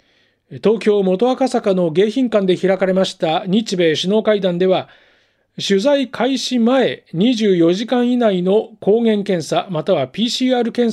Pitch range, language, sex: 165-225 Hz, Japanese, male